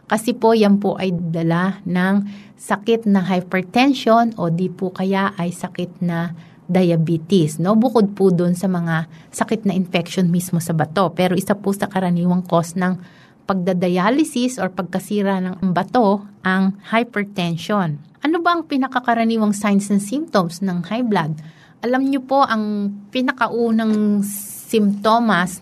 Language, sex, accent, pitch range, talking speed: Filipino, female, native, 175-220 Hz, 140 wpm